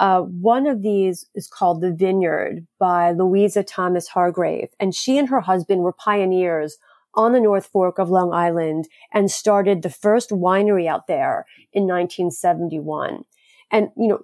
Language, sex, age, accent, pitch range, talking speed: English, female, 30-49, American, 180-210 Hz, 150 wpm